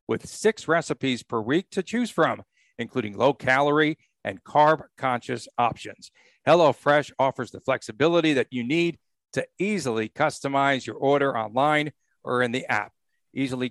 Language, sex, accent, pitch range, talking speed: English, male, American, 125-160 Hz, 145 wpm